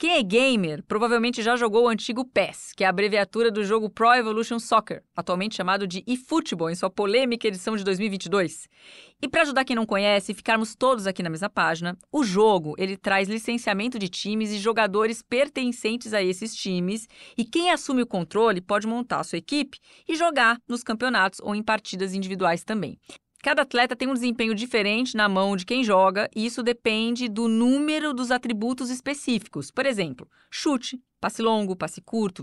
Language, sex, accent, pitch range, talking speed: Portuguese, female, Brazilian, 195-250 Hz, 185 wpm